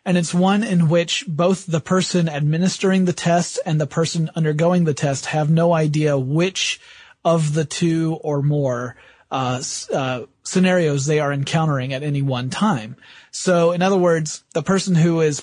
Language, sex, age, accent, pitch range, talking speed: English, male, 30-49, American, 145-180 Hz, 170 wpm